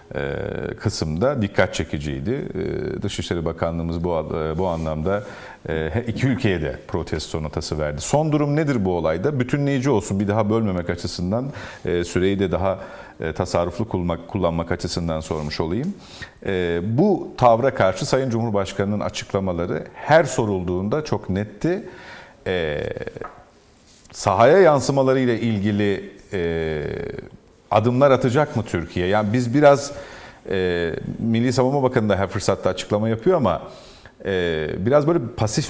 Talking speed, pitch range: 135 wpm, 95-140 Hz